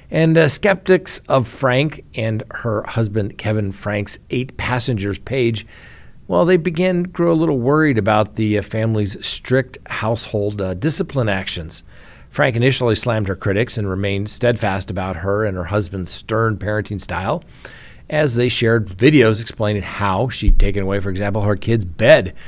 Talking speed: 160 wpm